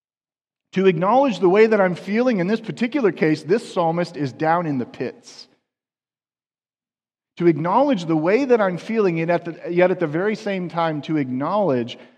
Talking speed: 170 wpm